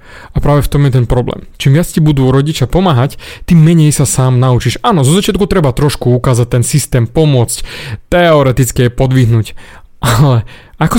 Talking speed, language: 170 wpm, Slovak